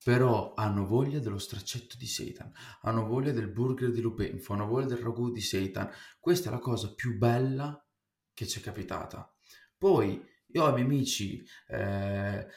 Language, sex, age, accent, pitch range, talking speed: Italian, male, 20-39, native, 100-130 Hz, 165 wpm